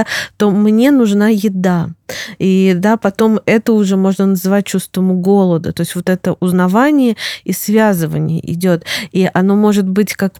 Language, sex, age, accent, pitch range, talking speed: Russian, female, 20-39, native, 180-220 Hz, 150 wpm